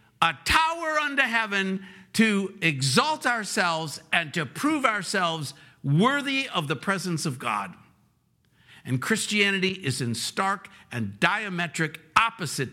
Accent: American